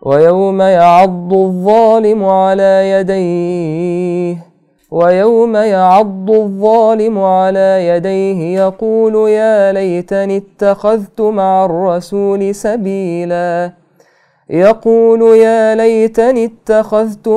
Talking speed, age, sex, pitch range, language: 75 wpm, 20-39, male, 180-220 Hz, Arabic